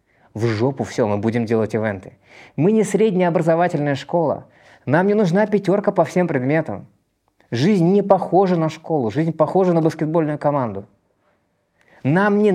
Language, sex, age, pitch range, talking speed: Russian, male, 20-39, 125-180 Hz, 150 wpm